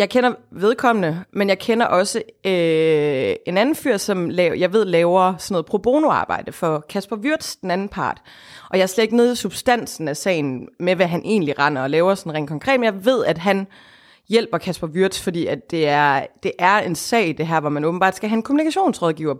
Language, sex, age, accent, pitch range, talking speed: Danish, female, 30-49, native, 160-205 Hz, 220 wpm